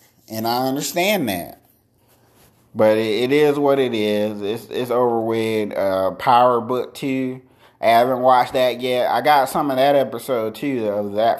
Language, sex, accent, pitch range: English, male, American, 105-125 Hz